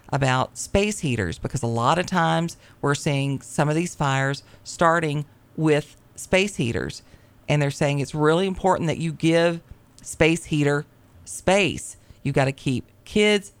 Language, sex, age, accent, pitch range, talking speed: English, female, 40-59, American, 130-170 Hz, 155 wpm